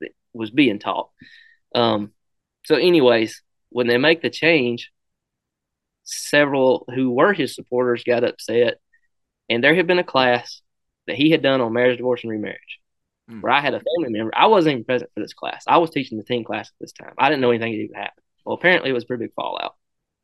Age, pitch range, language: 20-39, 115-135 Hz, English